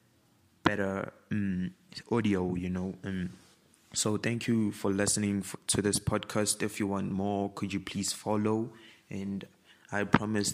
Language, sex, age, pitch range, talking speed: English, male, 20-39, 95-105 Hz, 140 wpm